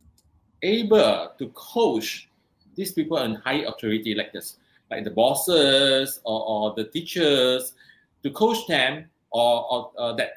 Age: 30-49